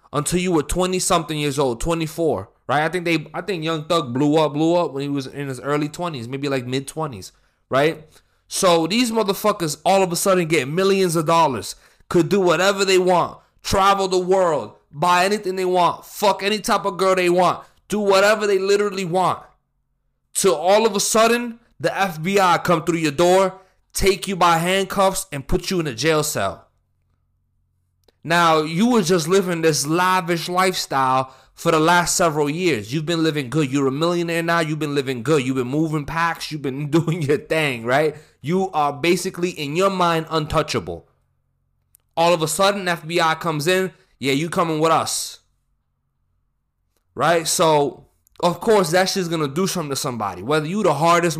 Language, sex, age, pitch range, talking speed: English, male, 20-39, 145-185 Hz, 185 wpm